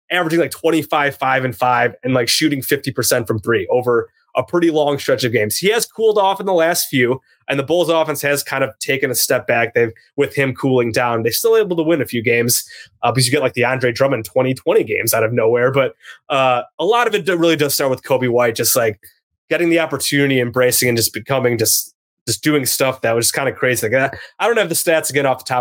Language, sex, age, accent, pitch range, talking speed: English, male, 20-39, American, 125-160 Hz, 250 wpm